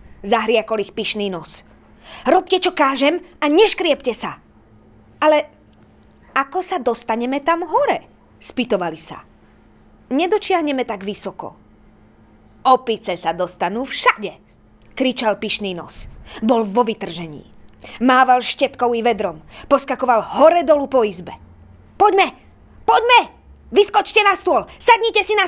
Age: 20-39